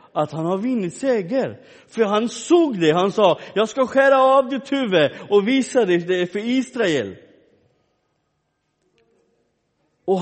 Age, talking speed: 50-69, 155 wpm